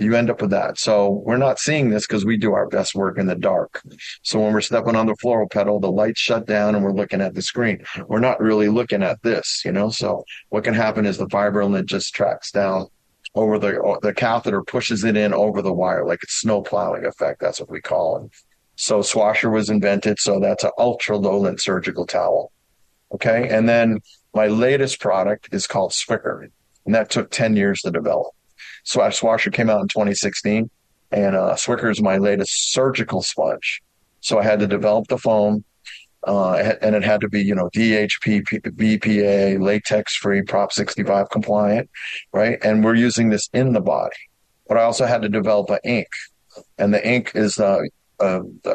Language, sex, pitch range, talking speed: English, male, 100-110 Hz, 195 wpm